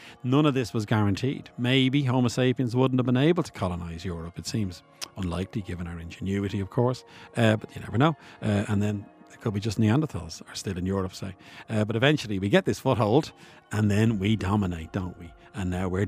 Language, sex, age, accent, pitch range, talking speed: English, male, 50-69, Irish, 95-115 Hz, 215 wpm